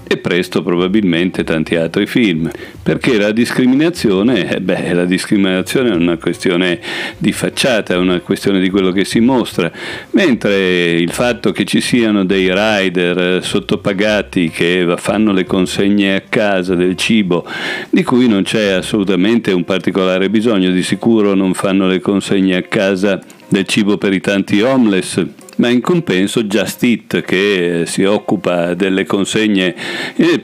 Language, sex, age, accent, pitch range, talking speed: Italian, male, 50-69, native, 90-110 Hz, 150 wpm